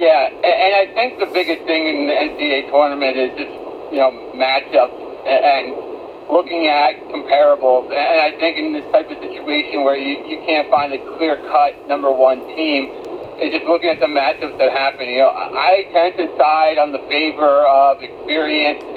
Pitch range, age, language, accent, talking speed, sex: 140-180 Hz, 50-69, English, American, 180 wpm, male